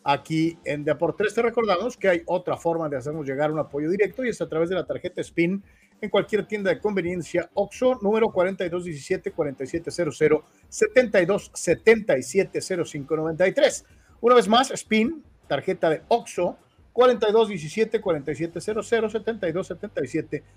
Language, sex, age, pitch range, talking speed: Spanish, male, 40-59, 160-215 Hz, 120 wpm